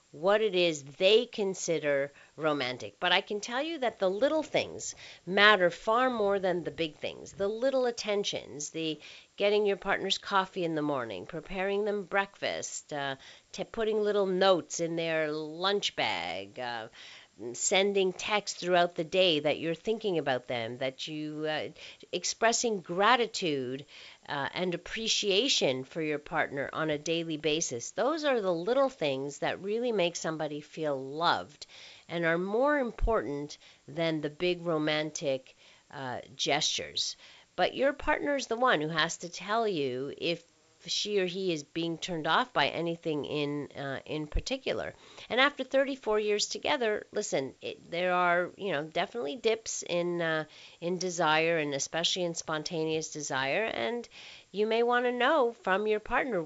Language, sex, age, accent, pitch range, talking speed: English, female, 50-69, American, 155-205 Hz, 155 wpm